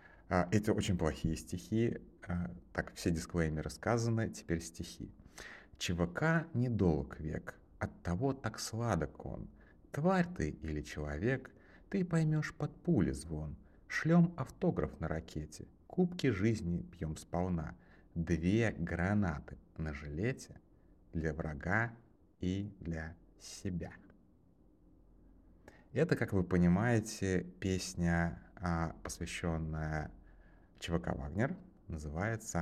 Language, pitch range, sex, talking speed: Russian, 80-110 Hz, male, 100 wpm